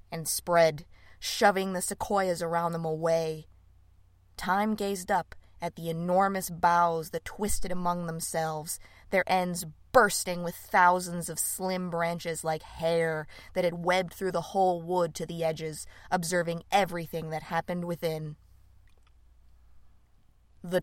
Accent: American